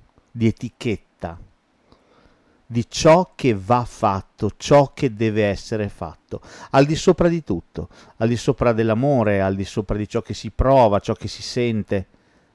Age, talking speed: 50-69, 160 wpm